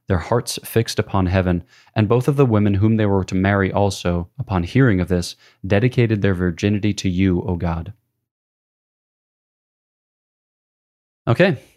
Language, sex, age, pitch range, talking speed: English, male, 20-39, 95-120 Hz, 145 wpm